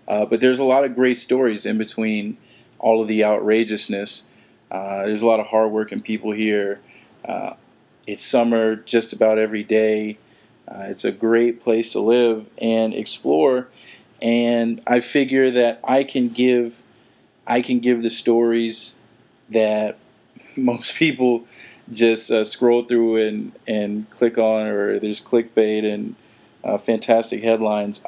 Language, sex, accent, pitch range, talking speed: English, male, American, 110-120 Hz, 145 wpm